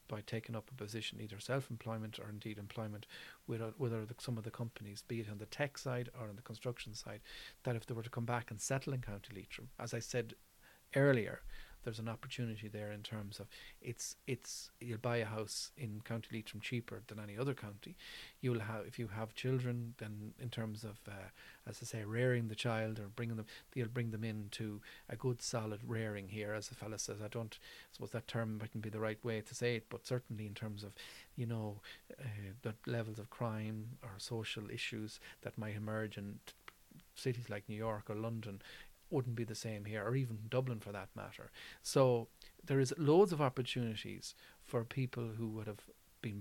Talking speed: 205 wpm